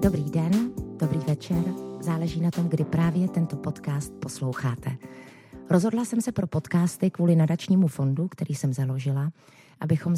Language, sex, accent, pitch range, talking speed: Czech, female, native, 140-180 Hz, 140 wpm